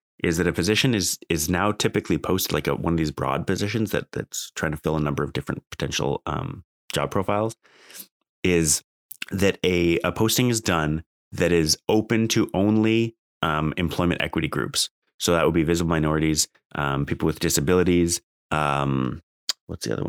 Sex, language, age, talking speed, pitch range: male, English, 30-49, 175 wpm, 75-100 Hz